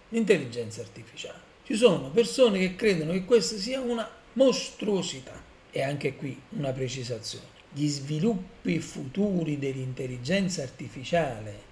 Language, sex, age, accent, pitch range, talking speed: Italian, male, 50-69, native, 130-170 Hz, 115 wpm